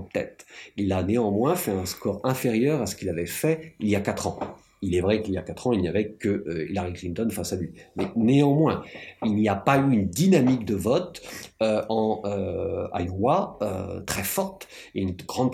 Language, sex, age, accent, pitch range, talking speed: French, male, 50-69, French, 95-125 Hz, 215 wpm